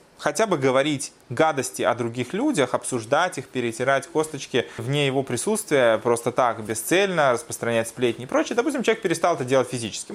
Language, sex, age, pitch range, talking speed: Russian, male, 20-39, 115-150 Hz, 160 wpm